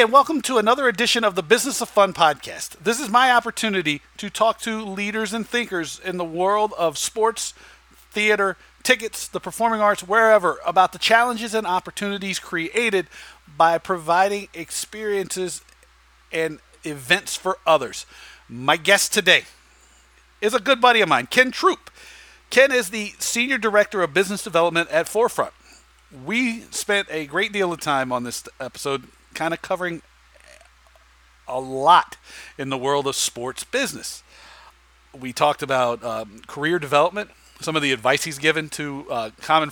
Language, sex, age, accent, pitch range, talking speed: English, male, 50-69, American, 150-210 Hz, 155 wpm